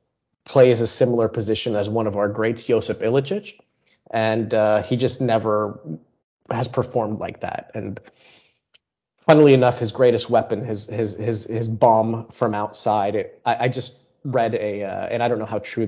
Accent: American